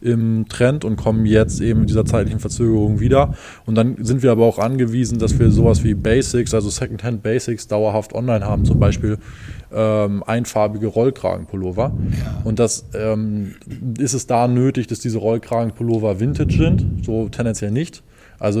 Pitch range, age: 105-120 Hz, 20-39